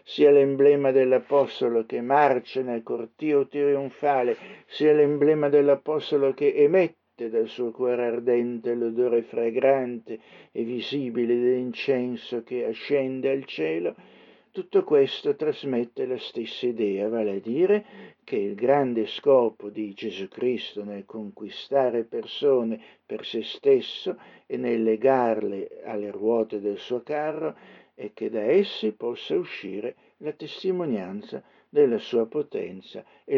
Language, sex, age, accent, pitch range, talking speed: Italian, male, 60-79, native, 115-145 Hz, 120 wpm